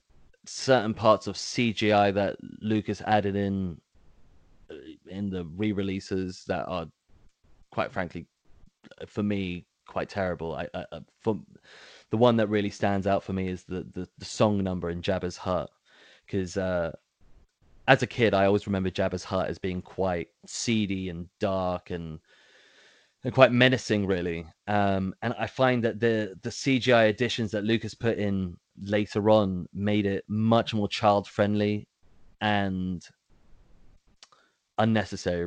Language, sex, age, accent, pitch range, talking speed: English, male, 20-39, British, 90-105 Hz, 140 wpm